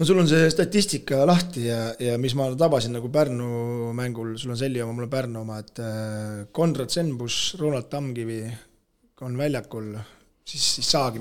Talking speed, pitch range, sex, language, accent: 170 wpm, 120-145 Hz, male, English, Finnish